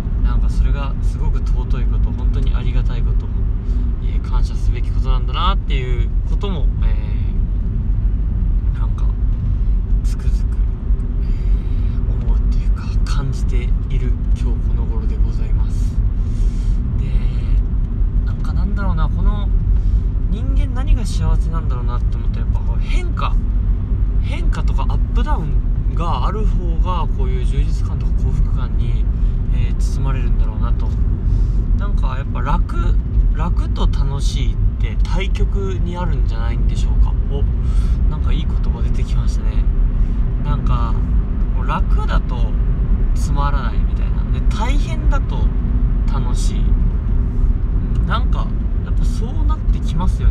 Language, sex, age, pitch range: Japanese, male, 20-39, 85-100 Hz